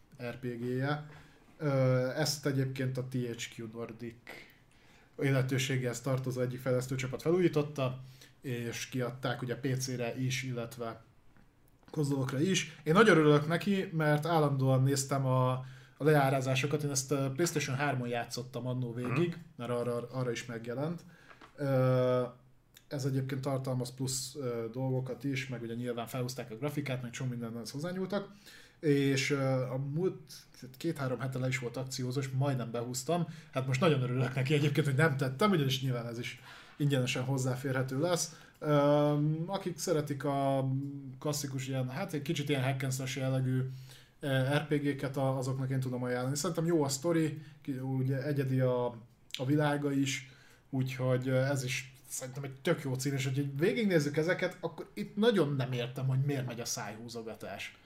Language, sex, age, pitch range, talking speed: Hungarian, male, 20-39, 125-145 Hz, 135 wpm